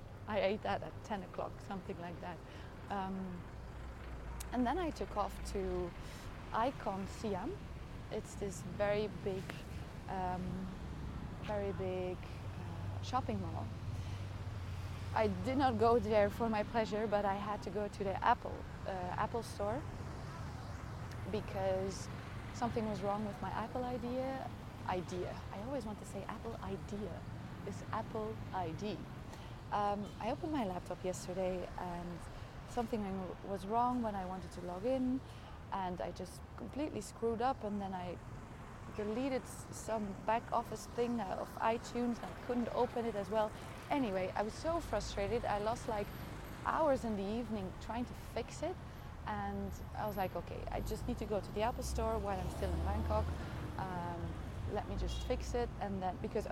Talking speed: 160 wpm